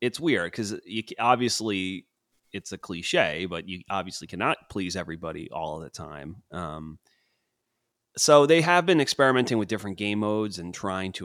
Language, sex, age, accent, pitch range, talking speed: English, male, 30-49, American, 85-105 Hz, 160 wpm